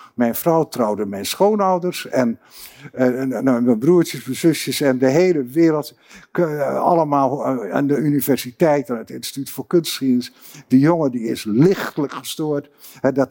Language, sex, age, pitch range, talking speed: Dutch, male, 60-79, 135-195 Hz, 150 wpm